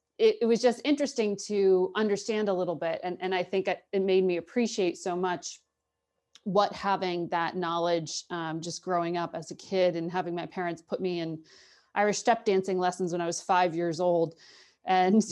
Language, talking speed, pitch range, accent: English, 195 wpm, 170-200 Hz, American